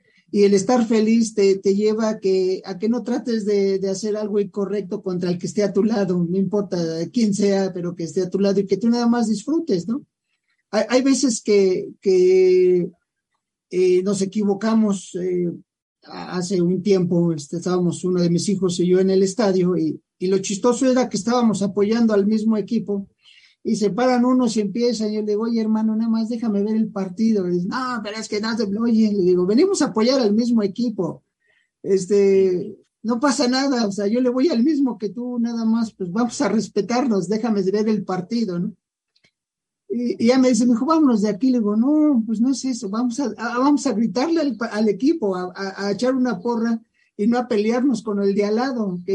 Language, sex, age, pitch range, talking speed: English, male, 50-69, 195-240 Hz, 210 wpm